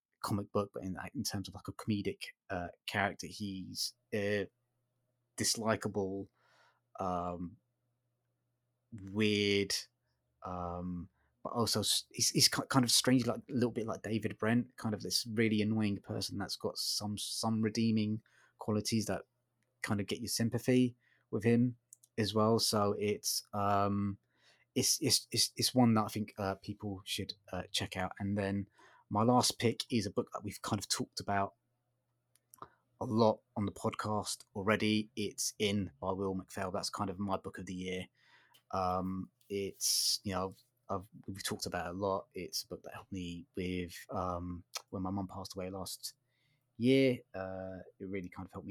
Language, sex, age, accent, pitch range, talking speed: English, male, 20-39, British, 95-115 Hz, 170 wpm